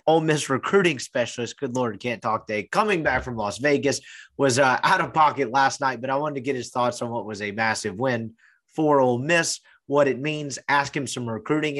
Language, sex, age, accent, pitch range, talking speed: English, male, 30-49, American, 120-150 Hz, 225 wpm